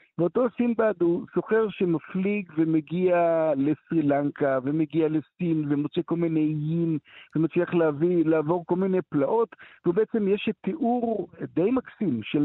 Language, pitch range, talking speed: Hebrew, 150-195 Hz, 130 wpm